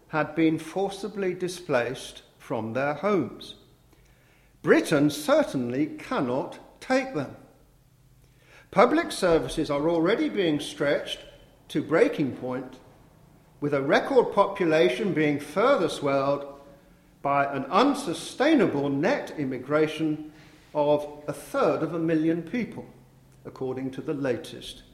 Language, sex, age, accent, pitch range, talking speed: English, male, 50-69, British, 130-195 Hz, 105 wpm